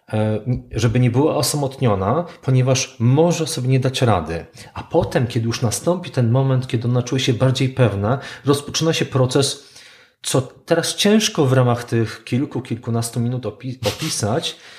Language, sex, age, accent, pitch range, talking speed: Polish, male, 40-59, native, 115-140 Hz, 145 wpm